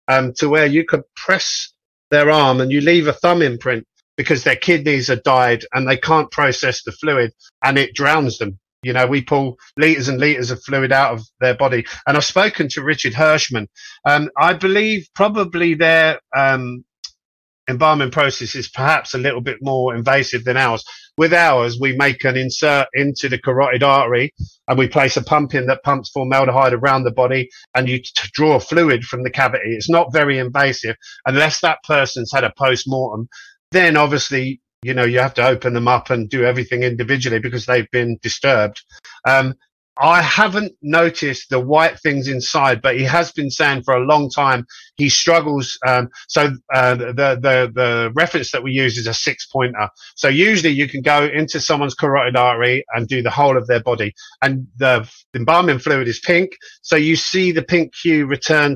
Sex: male